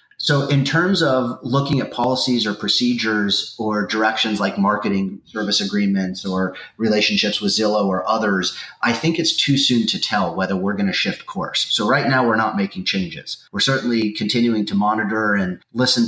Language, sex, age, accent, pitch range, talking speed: English, male, 30-49, American, 100-125 Hz, 180 wpm